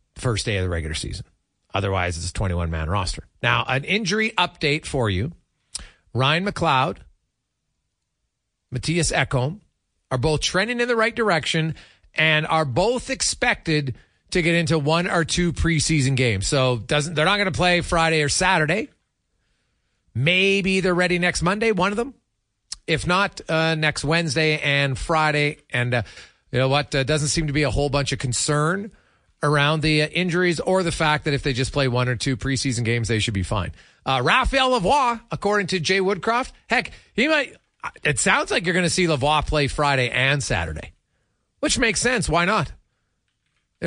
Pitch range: 125-175 Hz